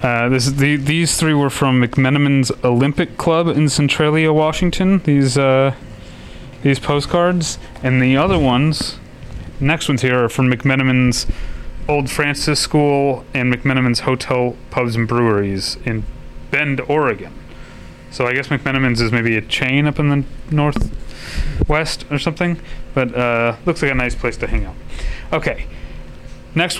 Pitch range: 125-145 Hz